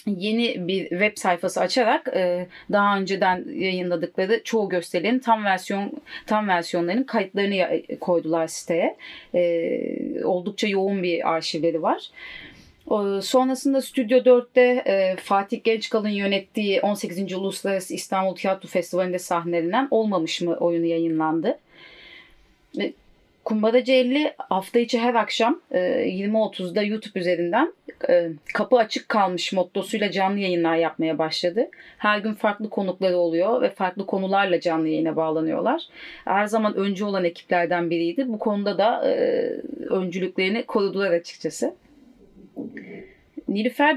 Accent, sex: native, female